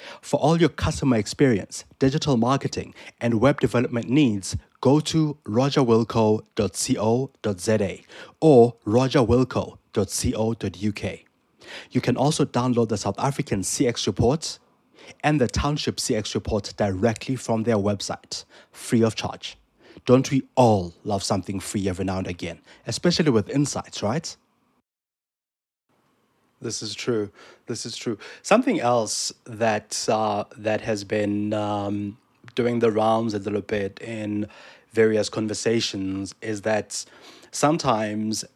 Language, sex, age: English, male, 30-49